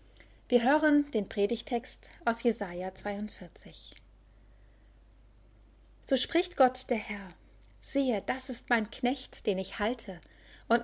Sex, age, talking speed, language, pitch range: female, 30-49, 115 wpm, German, 180-235 Hz